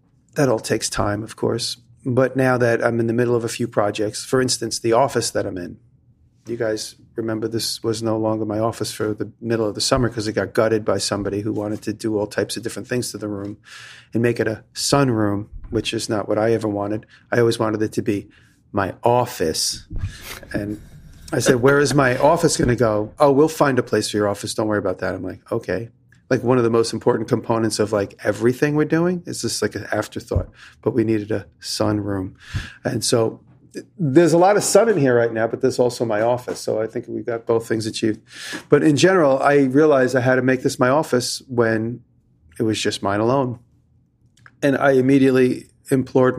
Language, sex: English, male